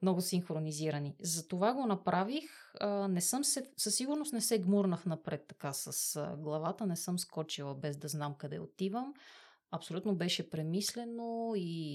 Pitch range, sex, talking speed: 165-220 Hz, female, 145 wpm